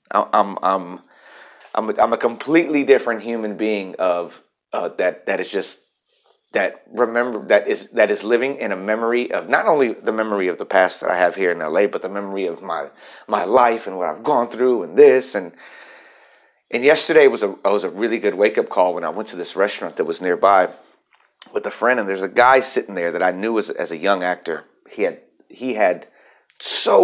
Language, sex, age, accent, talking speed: English, male, 40-59, American, 215 wpm